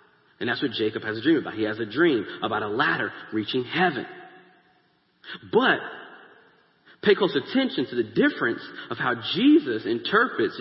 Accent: American